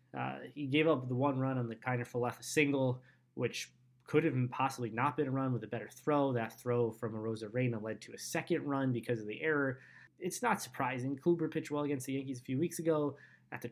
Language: English